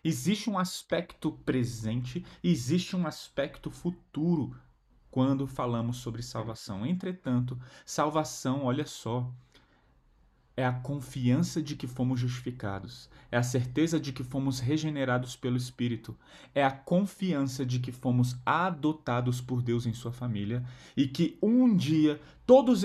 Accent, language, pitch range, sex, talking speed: Brazilian, Portuguese, 125-180 Hz, male, 130 wpm